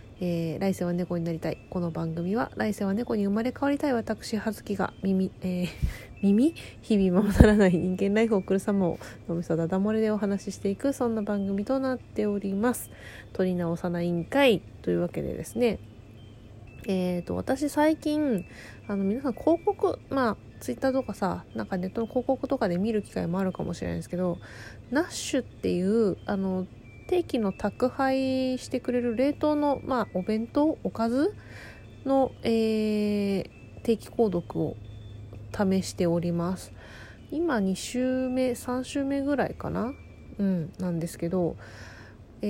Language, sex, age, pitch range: Japanese, female, 20-39, 180-255 Hz